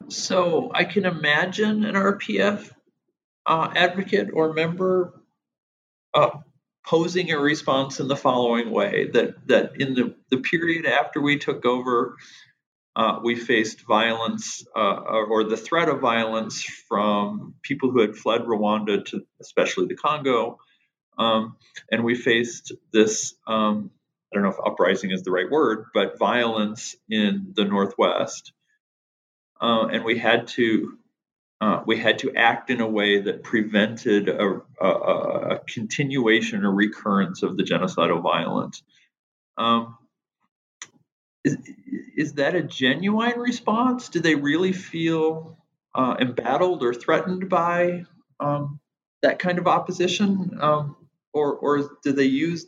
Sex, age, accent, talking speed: male, 40-59, American, 135 wpm